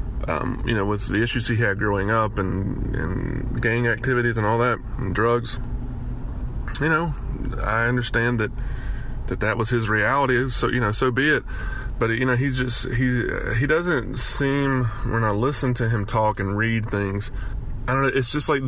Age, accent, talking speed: 20-39, American, 190 wpm